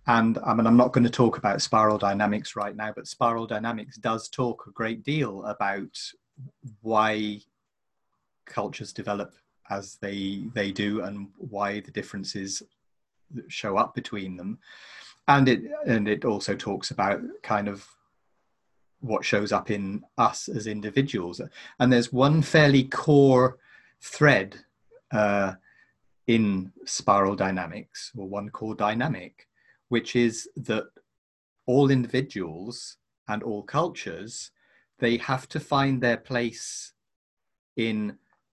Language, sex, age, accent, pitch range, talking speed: English, male, 30-49, British, 105-125 Hz, 125 wpm